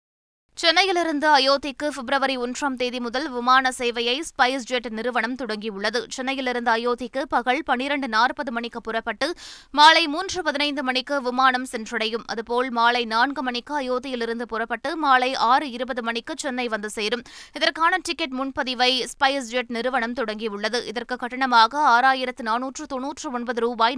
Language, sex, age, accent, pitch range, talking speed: Tamil, female, 20-39, native, 240-285 Hz, 110 wpm